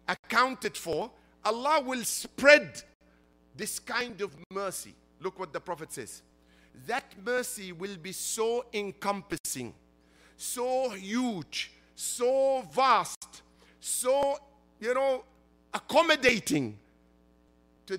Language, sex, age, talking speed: English, male, 50-69, 95 wpm